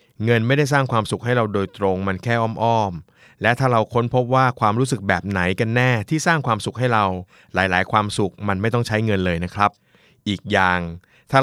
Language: Thai